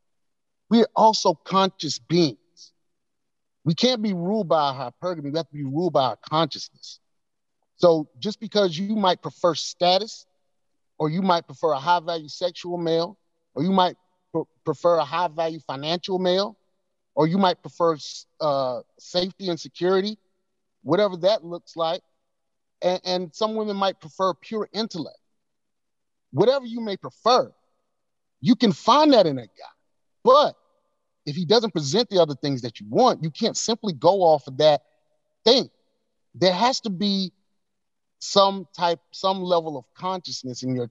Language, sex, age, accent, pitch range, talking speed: English, male, 30-49, American, 155-205 Hz, 155 wpm